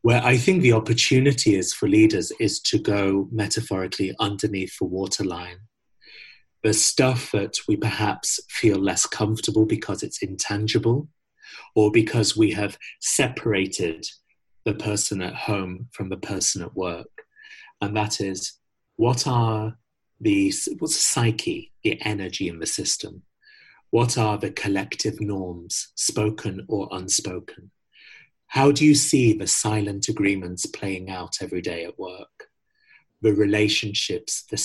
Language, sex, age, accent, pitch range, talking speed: English, male, 30-49, British, 105-140 Hz, 135 wpm